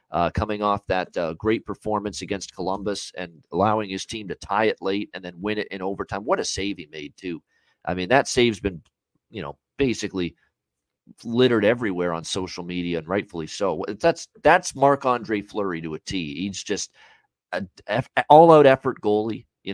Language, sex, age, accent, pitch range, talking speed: English, male, 40-59, American, 90-115 Hz, 180 wpm